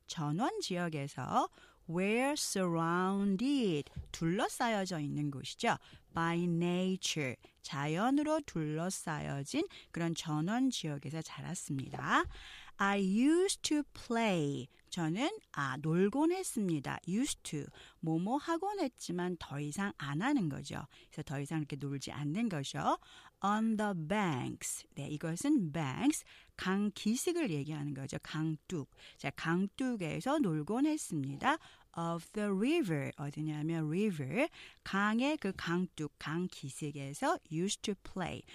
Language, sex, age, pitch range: Korean, female, 40-59, 155-230 Hz